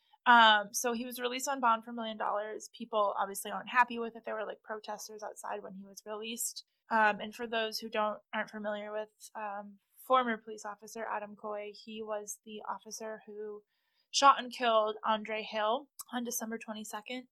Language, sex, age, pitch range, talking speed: English, female, 20-39, 210-245 Hz, 185 wpm